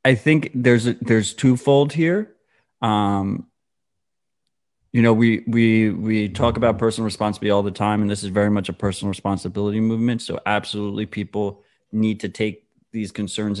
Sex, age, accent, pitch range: male, 30-49, American, 100-120 Hz